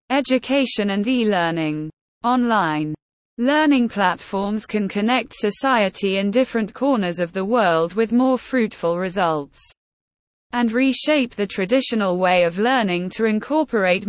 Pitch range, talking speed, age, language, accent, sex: 185-245 Hz, 120 wpm, 20-39, English, British, female